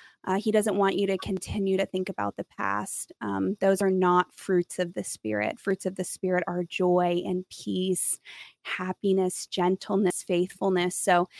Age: 20-39